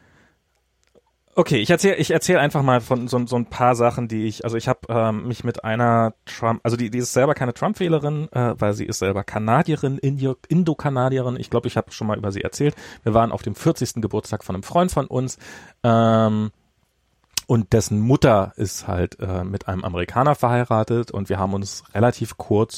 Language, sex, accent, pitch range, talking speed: German, male, German, 100-125 Hz, 195 wpm